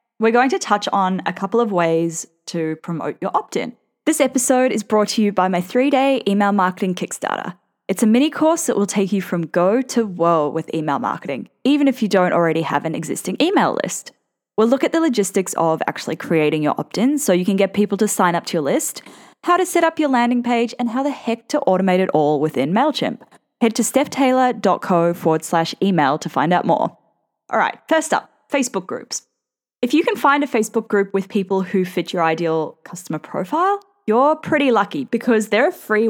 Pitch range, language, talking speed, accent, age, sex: 170-250 Hz, English, 210 wpm, Australian, 10-29, female